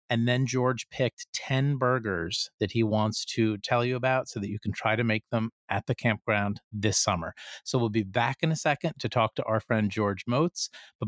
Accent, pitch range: American, 115-165 Hz